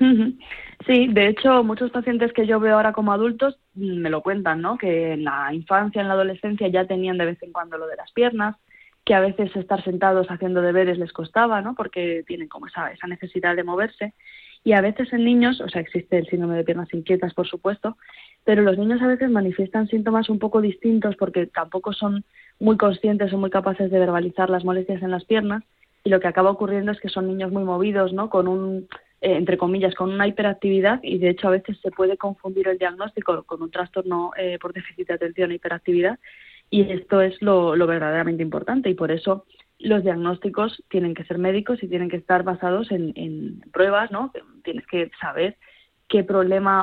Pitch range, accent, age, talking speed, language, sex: 180-210 Hz, Spanish, 20-39, 205 wpm, Spanish, female